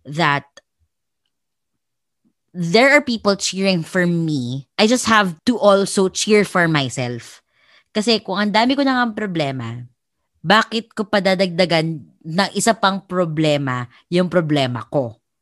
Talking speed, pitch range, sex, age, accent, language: 130 wpm, 140-190 Hz, female, 20-39, Filipino, English